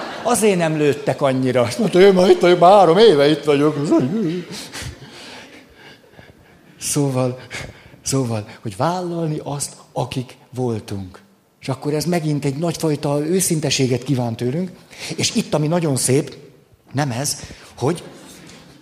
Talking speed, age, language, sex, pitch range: 125 wpm, 60-79, Hungarian, male, 120-165 Hz